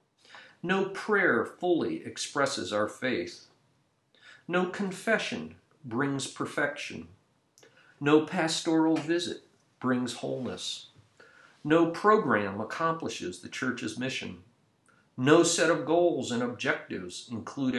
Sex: male